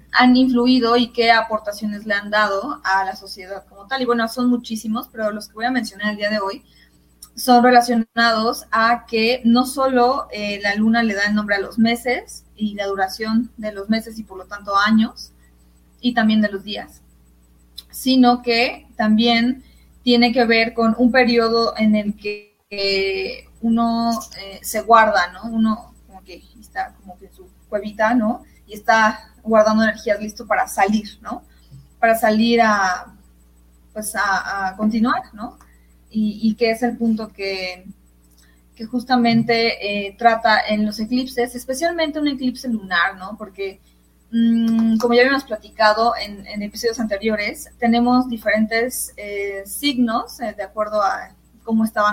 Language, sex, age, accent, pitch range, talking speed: Spanish, female, 20-39, Mexican, 200-235 Hz, 165 wpm